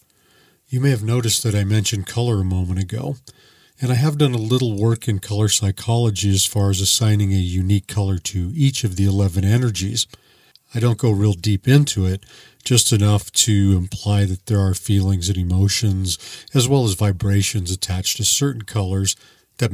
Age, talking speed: 50-69, 180 wpm